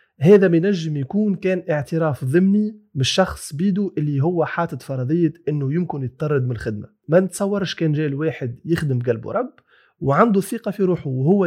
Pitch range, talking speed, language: 145-200 Hz, 155 wpm, Arabic